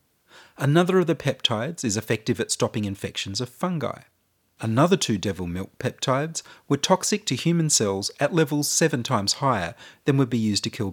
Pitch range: 110-150 Hz